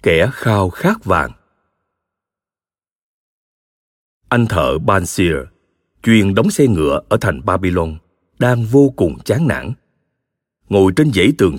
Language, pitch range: Vietnamese, 90-120 Hz